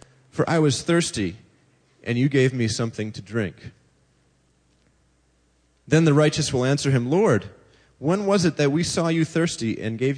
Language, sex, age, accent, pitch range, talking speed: English, male, 30-49, American, 100-140 Hz, 165 wpm